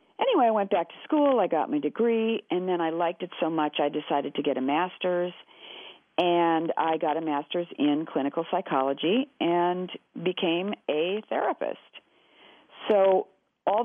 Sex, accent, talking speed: female, American, 160 wpm